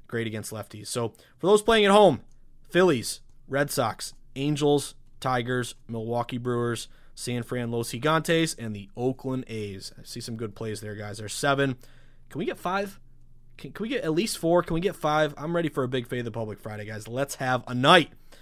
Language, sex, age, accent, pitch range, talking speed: English, male, 20-39, American, 120-160 Hz, 200 wpm